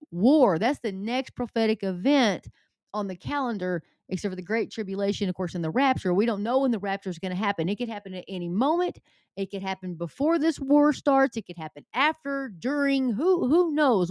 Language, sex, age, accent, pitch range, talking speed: English, female, 30-49, American, 190-245 Hz, 215 wpm